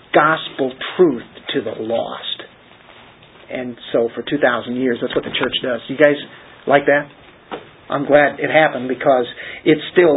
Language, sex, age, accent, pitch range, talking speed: English, male, 40-59, American, 140-190 Hz, 155 wpm